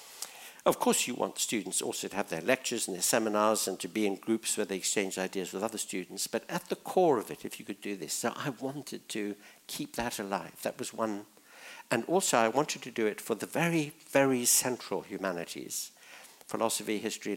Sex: male